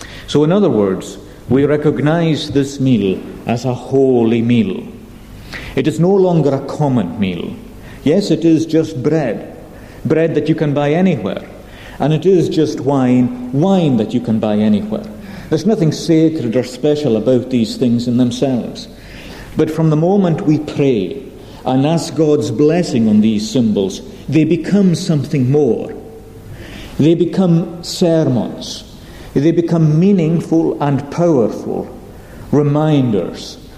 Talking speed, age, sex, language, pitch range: 135 wpm, 50-69, male, English, 115-160 Hz